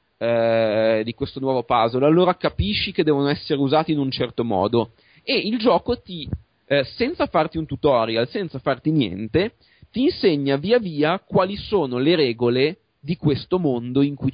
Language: Italian